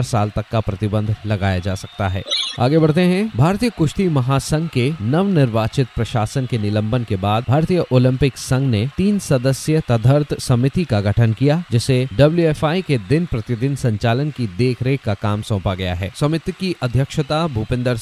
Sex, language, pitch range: male, Hindi, 115-150 Hz